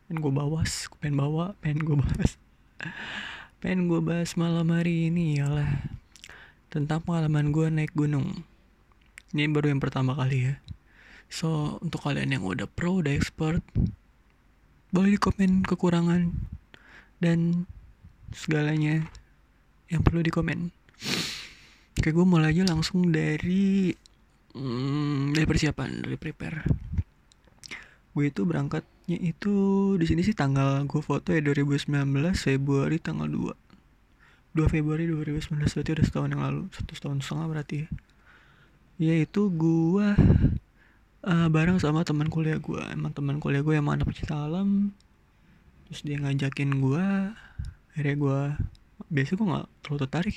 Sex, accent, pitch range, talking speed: male, native, 140-170 Hz, 135 wpm